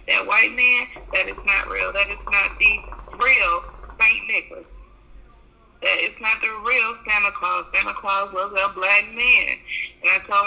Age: 20-39